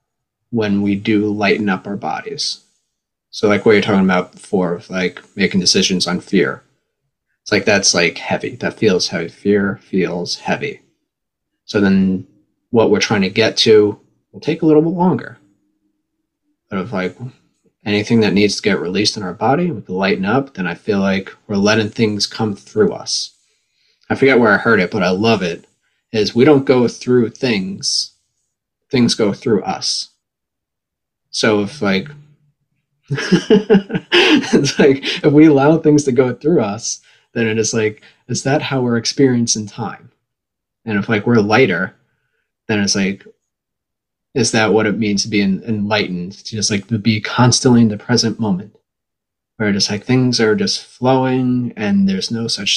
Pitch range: 105-145 Hz